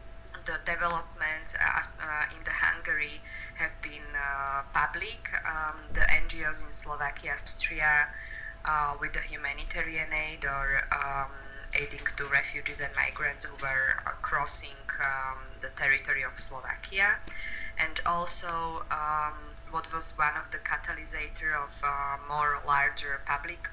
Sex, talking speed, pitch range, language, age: female, 130 wpm, 140-155 Hz, Hungarian, 20-39